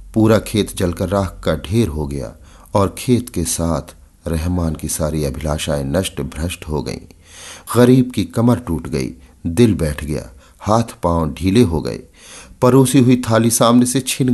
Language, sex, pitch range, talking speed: Hindi, male, 80-105 Hz, 165 wpm